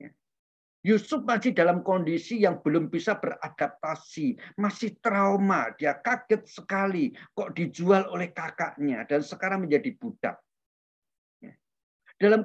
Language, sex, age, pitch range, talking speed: English, male, 50-69, 170-245 Hz, 105 wpm